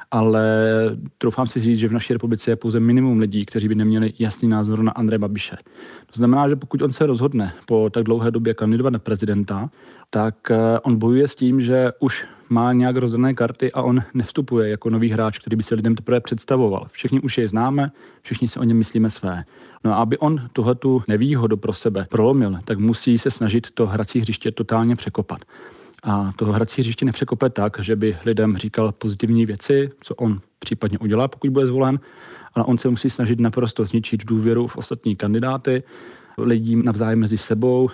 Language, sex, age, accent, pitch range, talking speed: Czech, male, 40-59, native, 110-130 Hz, 190 wpm